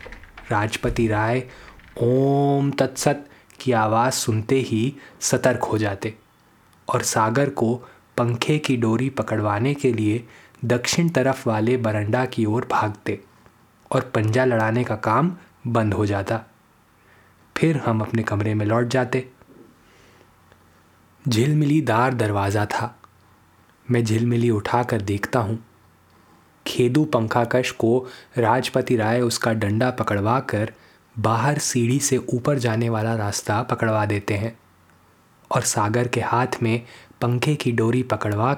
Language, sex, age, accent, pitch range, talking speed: Hindi, male, 20-39, native, 105-125 Hz, 120 wpm